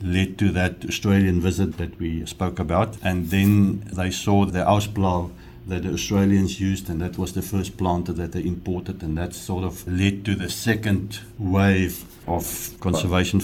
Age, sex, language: 60-79, male, English